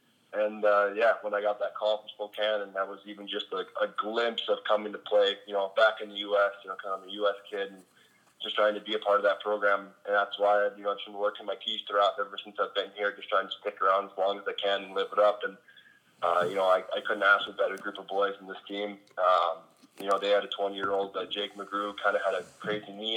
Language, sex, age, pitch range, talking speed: English, male, 20-39, 100-105 Hz, 275 wpm